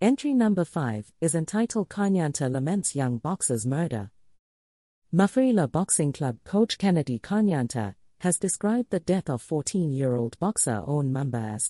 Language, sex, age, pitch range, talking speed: English, female, 40-59, 120-190 Hz, 145 wpm